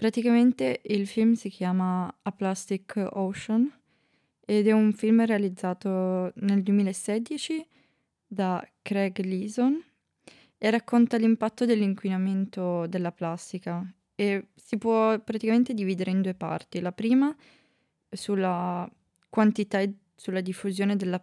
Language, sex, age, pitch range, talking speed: Italian, female, 20-39, 180-210 Hz, 115 wpm